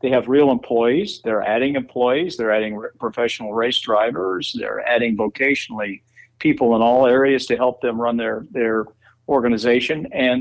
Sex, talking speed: male, 155 wpm